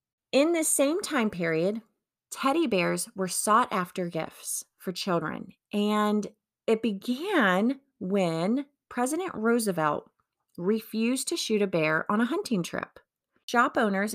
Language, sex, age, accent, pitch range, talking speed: English, female, 30-49, American, 175-240 Hz, 125 wpm